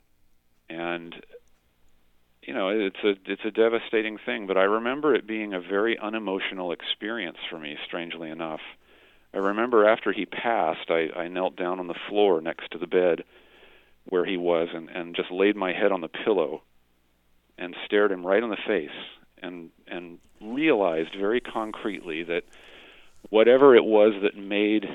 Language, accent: English, American